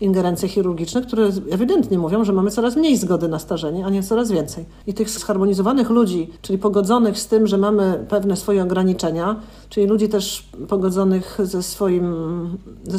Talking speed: 165 wpm